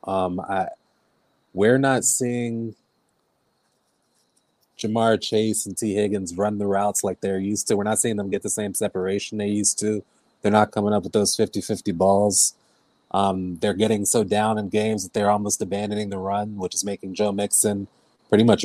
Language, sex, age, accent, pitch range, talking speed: English, male, 30-49, American, 100-110 Hz, 180 wpm